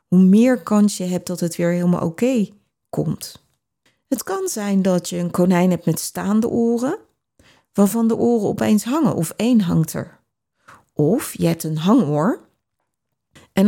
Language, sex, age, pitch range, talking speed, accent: Dutch, female, 40-59, 170-220 Hz, 160 wpm, Dutch